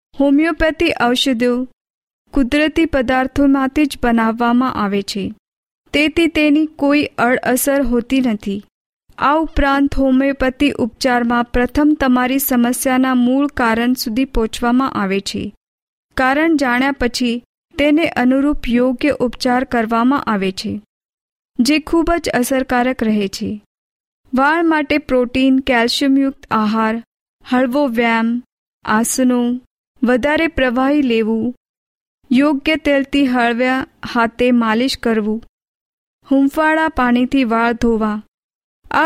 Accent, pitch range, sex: native, 240-280 Hz, female